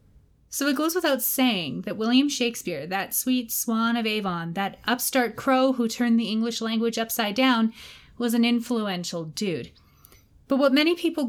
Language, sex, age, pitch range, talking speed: English, female, 30-49, 195-245 Hz, 165 wpm